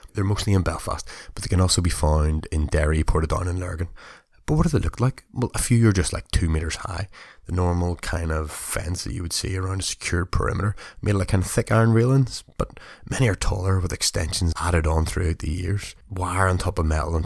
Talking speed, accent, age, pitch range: 240 wpm, Irish, 20-39, 85-105 Hz